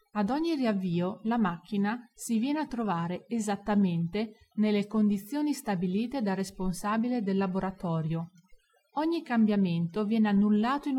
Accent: native